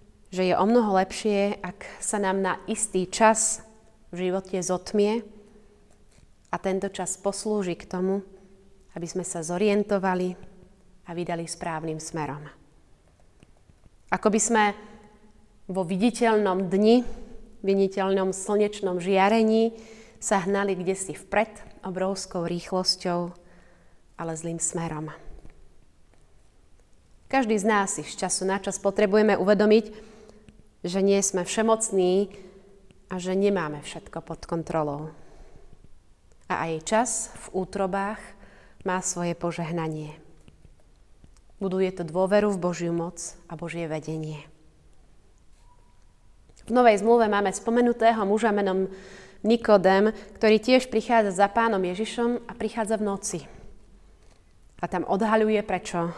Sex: female